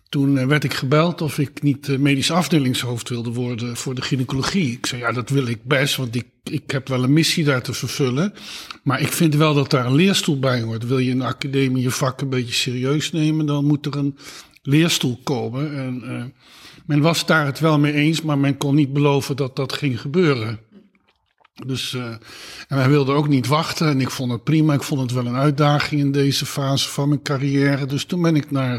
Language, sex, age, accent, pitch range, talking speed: Dutch, male, 50-69, Dutch, 130-155 Hz, 220 wpm